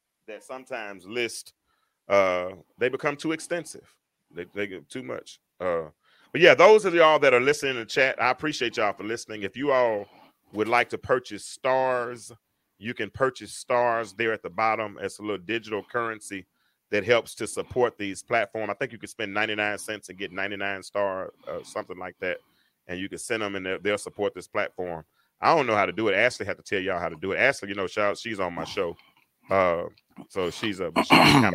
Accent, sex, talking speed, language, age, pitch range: American, male, 215 wpm, English, 30-49, 100-125 Hz